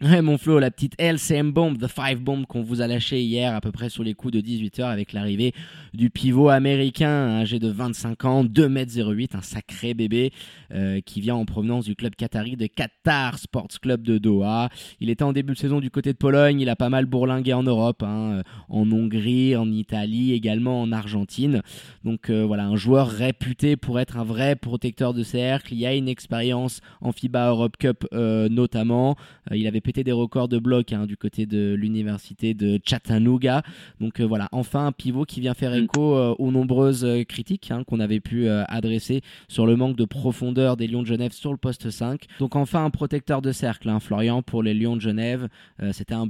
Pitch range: 110-130 Hz